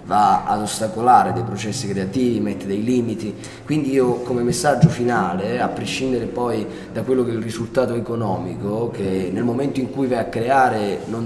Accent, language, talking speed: native, Italian, 175 wpm